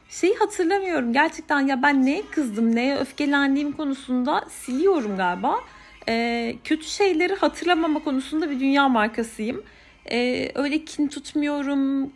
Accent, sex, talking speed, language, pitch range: native, female, 120 wpm, Turkish, 245-305 Hz